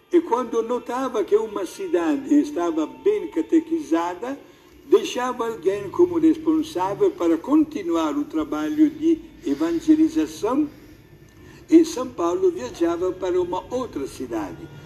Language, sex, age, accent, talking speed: Portuguese, male, 60-79, Italian, 110 wpm